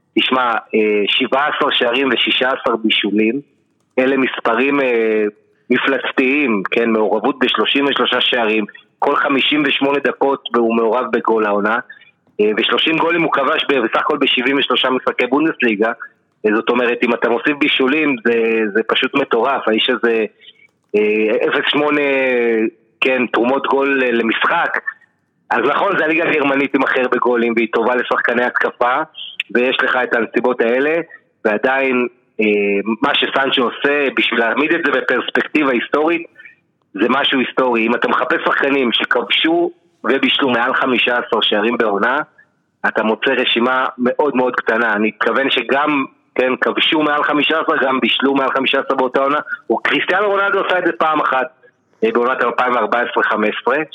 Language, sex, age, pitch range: Hebrew, male, 30-49, 115-140 Hz